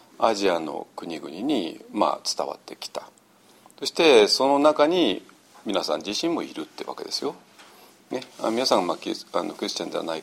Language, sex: Japanese, male